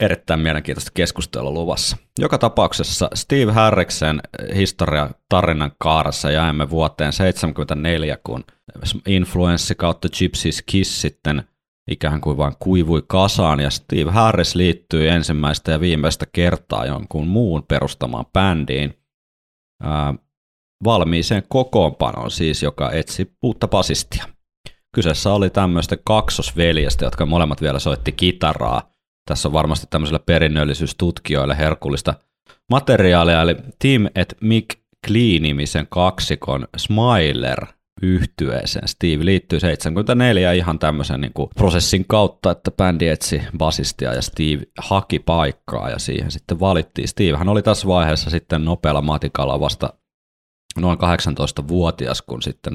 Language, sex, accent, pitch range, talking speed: Finnish, male, native, 75-95 Hz, 115 wpm